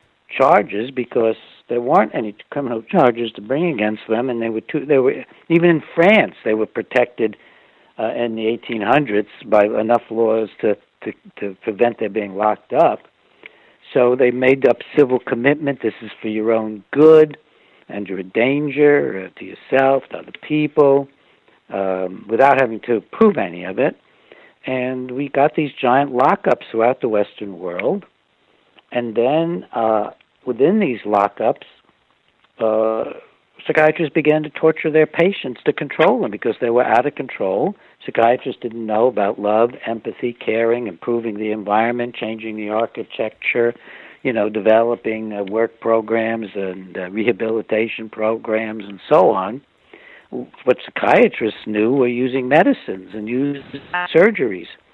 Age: 60-79